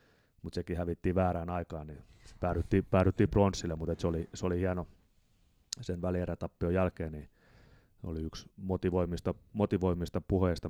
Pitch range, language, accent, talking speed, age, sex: 85-95 Hz, Finnish, native, 140 wpm, 30-49, male